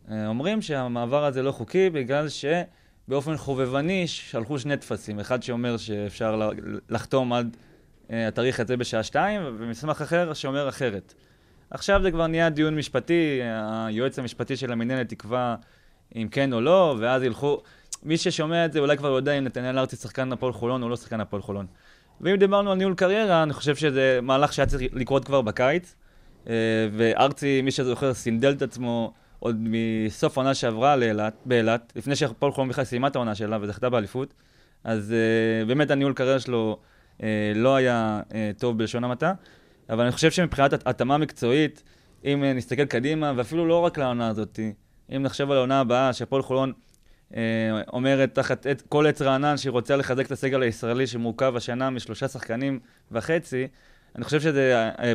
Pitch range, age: 115-140 Hz, 20-39